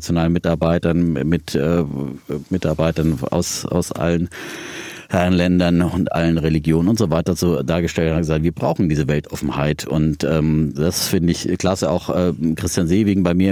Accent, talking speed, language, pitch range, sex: German, 155 wpm, German, 80-95 Hz, male